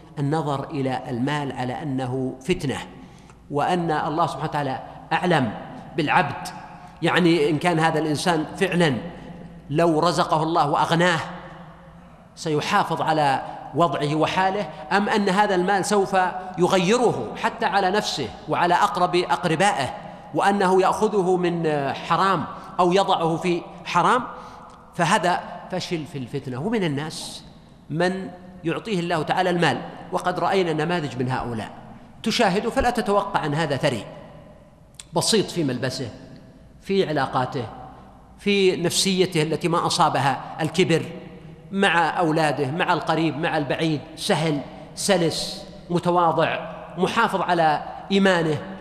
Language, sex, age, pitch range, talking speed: Arabic, male, 50-69, 155-195 Hz, 110 wpm